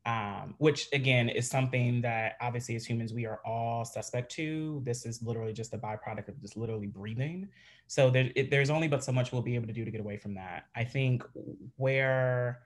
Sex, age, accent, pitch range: male, 30-49, American, 115-130 Hz